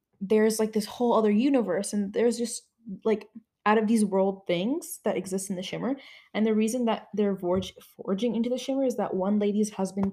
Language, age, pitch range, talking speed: English, 10-29, 185-240 Hz, 200 wpm